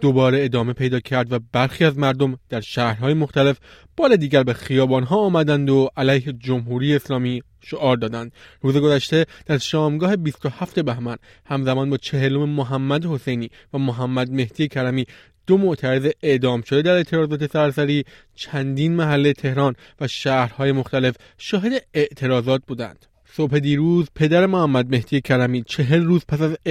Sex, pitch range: male, 130-155 Hz